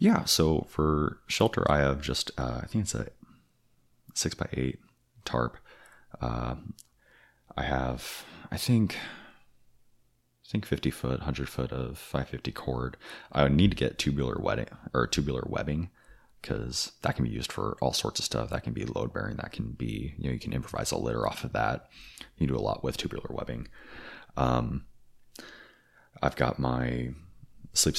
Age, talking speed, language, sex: 30-49, 160 wpm, English, male